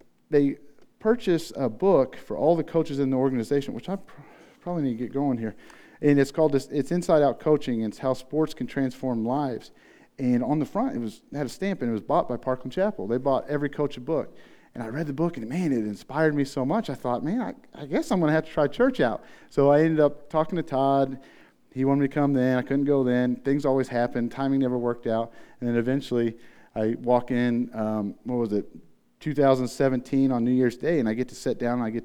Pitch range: 120-145 Hz